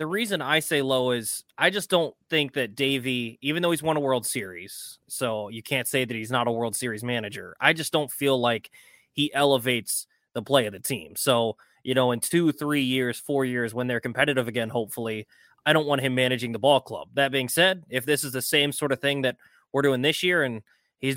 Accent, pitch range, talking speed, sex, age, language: American, 125-140 Hz, 230 wpm, male, 20-39, English